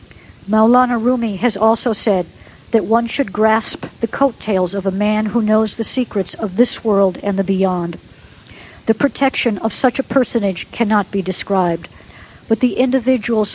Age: 60-79